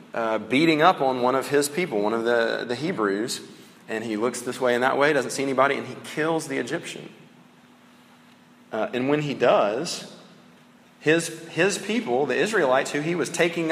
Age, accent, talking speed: 40-59, American, 190 wpm